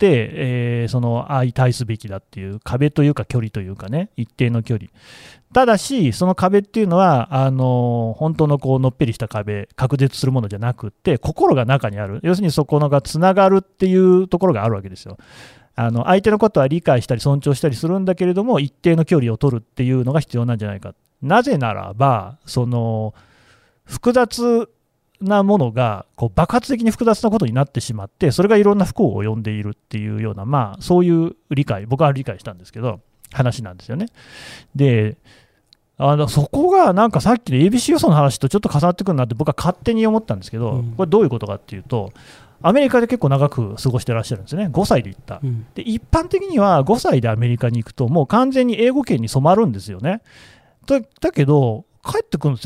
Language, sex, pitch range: Japanese, male, 115-185 Hz